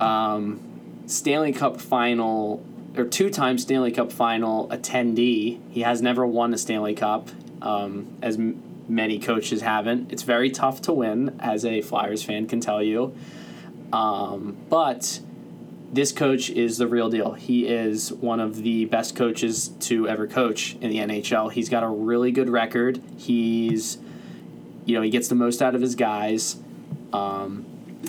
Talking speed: 160 wpm